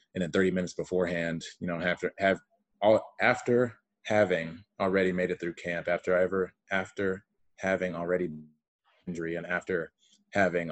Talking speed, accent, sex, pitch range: 150 wpm, American, male, 80-90 Hz